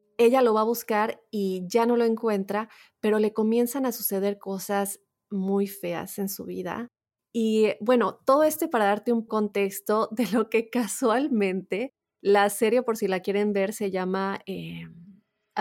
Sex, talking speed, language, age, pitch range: female, 165 wpm, Spanish, 20-39, 195-240 Hz